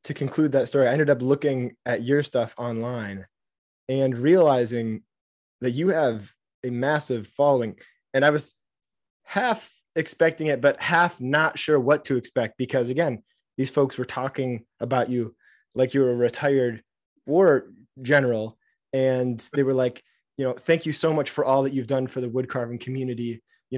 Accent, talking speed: American, 175 wpm